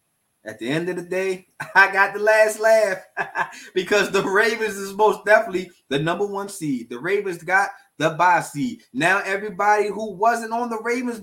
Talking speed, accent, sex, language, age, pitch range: 180 wpm, American, male, English, 20-39, 155-215 Hz